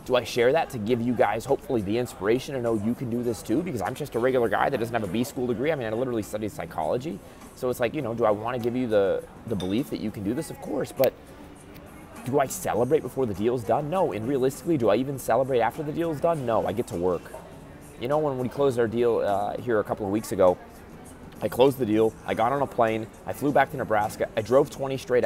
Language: English